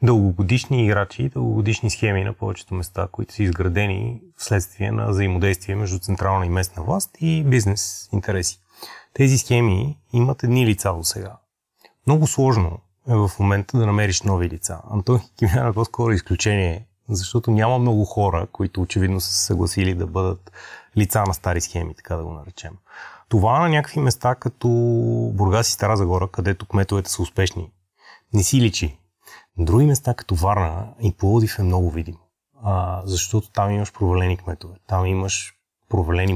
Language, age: Bulgarian, 30-49